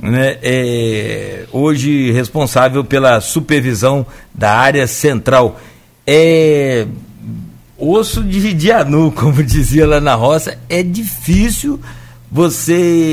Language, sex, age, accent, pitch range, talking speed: Portuguese, male, 60-79, Brazilian, 125-175 Hz, 90 wpm